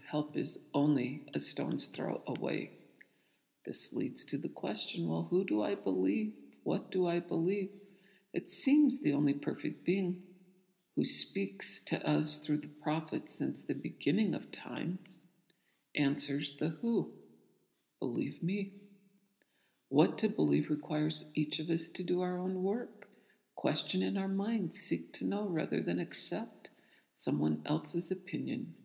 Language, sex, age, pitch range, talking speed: English, female, 50-69, 145-185 Hz, 145 wpm